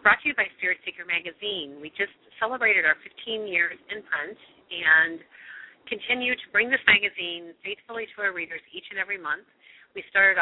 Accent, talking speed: American, 180 wpm